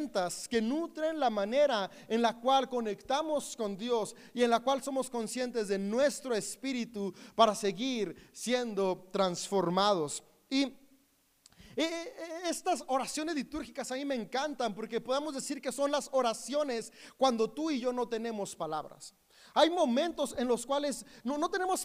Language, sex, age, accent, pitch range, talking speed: Spanish, male, 30-49, Mexican, 225-290 Hz, 150 wpm